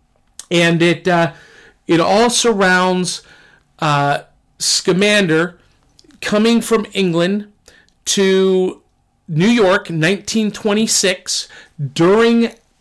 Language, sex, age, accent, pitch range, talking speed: English, male, 40-59, American, 160-200 Hz, 75 wpm